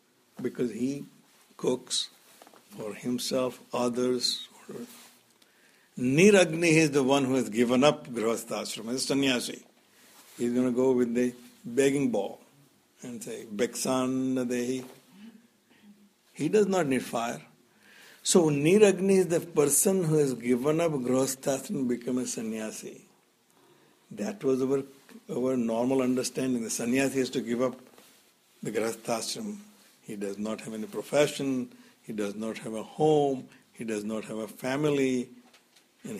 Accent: Indian